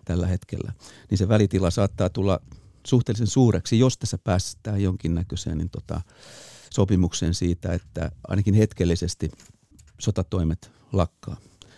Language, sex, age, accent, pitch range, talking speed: Finnish, male, 50-69, native, 95-110 Hz, 110 wpm